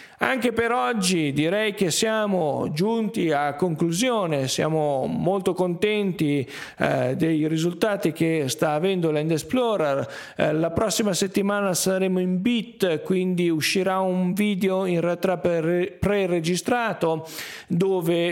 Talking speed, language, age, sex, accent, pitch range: 115 wpm, Italian, 40-59, male, native, 150-190 Hz